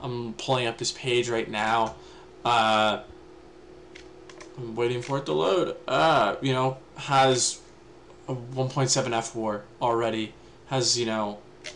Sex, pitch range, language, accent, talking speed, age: male, 115-140 Hz, English, American, 130 wpm, 20-39